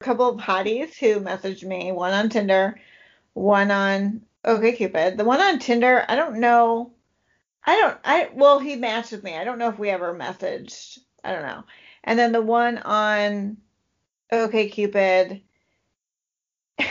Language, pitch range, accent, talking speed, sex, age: English, 215-280 Hz, American, 155 wpm, female, 40-59